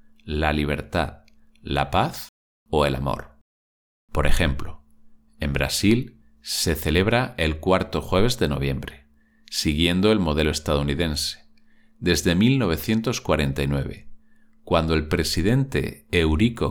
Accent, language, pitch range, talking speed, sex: Spanish, English, 75-115 Hz, 100 wpm, male